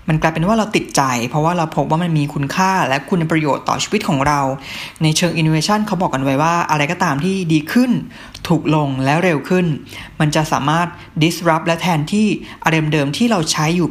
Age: 20-39